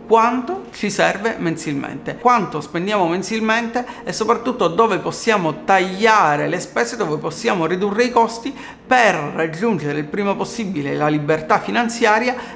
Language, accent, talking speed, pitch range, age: Italian, native, 130 wpm, 190-245 Hz, 40-59